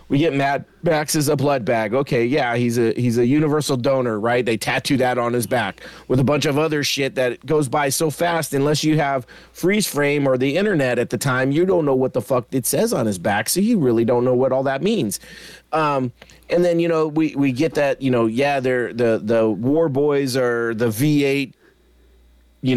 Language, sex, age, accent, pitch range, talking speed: English, male, 30-49, American, 125-170 Hz, 225 wpm